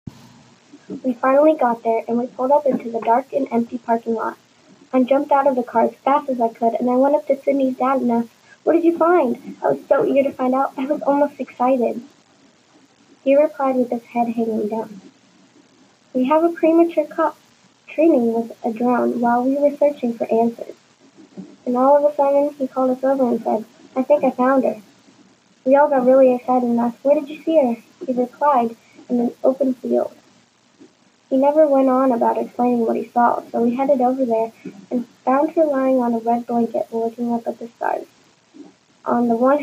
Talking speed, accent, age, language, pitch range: 205 wpm, American, 10-29, English, 235-275 Hz